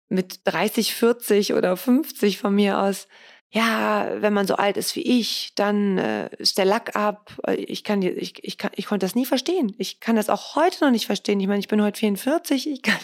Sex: female